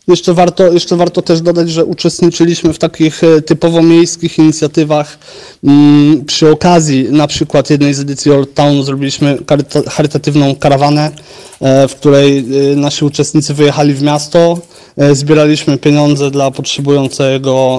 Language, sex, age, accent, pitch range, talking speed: Polish, male, 30-49, native, 135-155 Hz, 120 wpm